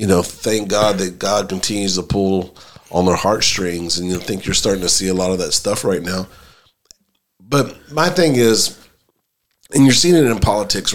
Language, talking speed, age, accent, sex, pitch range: English, 195 wpm, 40-59, American, male, 100-130 Hz